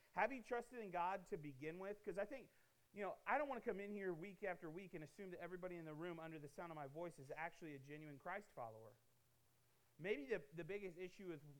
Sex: male